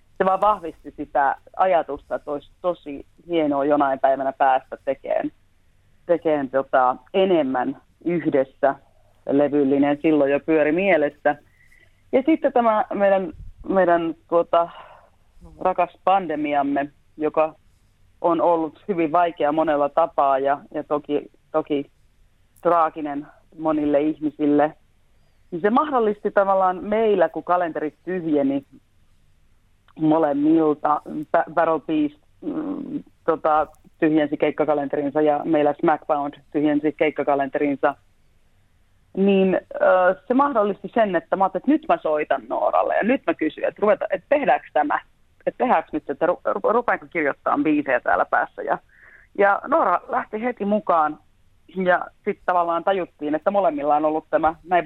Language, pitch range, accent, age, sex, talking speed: Finnish, 140-185 Hz, native, 30-49, female, 120 wpm